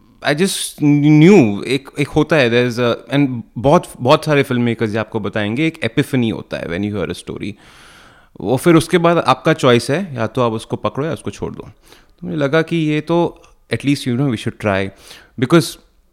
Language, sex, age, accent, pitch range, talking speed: Hindi, male, 30-49, native, 100-140 Hz, 210 wpm